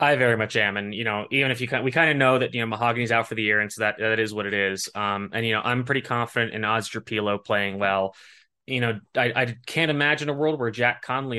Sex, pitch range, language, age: male, 105-130 Hz, English, 20-39